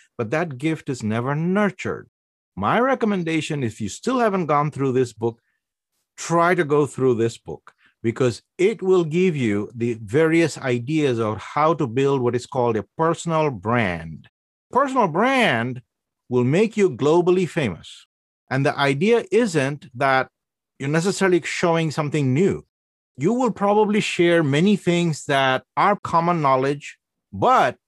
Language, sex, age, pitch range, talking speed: English, male, 50-69, 125-190 Hz, 145 wpm